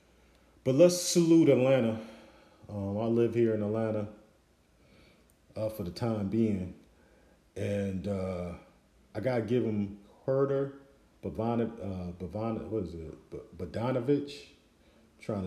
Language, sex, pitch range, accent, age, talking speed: English, male, 90-115 Hz, American, 40-59, 125 wpm